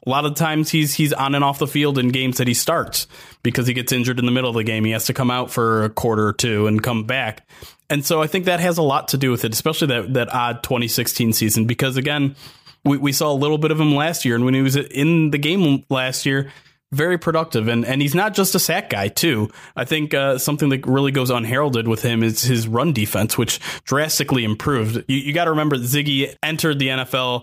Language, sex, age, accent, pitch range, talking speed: English, male, 30-49, American, 120-145 Hz, 255 wpm